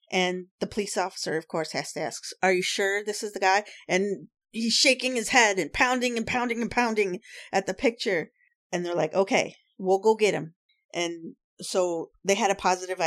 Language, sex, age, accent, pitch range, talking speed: English, female, 40-59, American, 175-215 Hz, 200 wpm